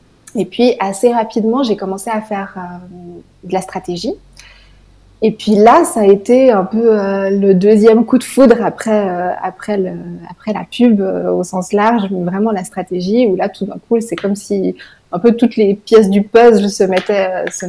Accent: French